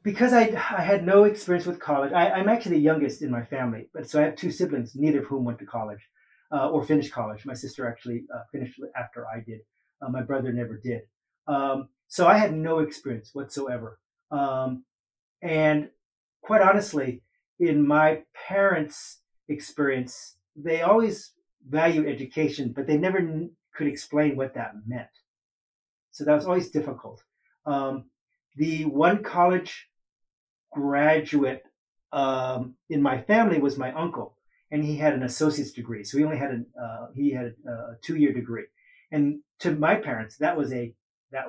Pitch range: 125-160 Hz